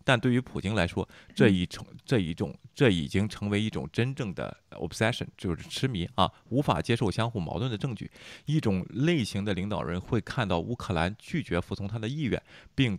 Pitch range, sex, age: 85-115 Hz, male, 20-39